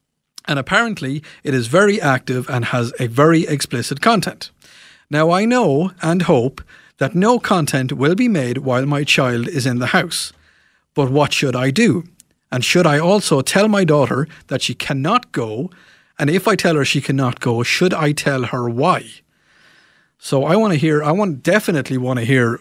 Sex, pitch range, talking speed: male, 125-170 Hz, 185 wpm